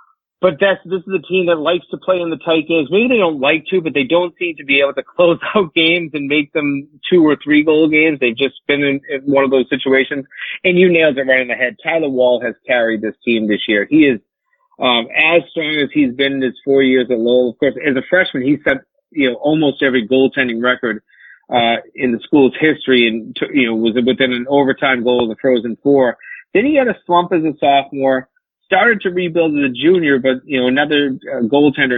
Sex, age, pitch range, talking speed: male, 30-49, 130-165 Hz, 240 wpm